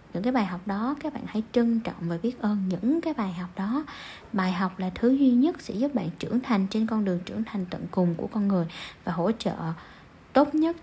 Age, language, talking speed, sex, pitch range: 10-29, Vietnamese, 245 wpm, female, 190-245 Hz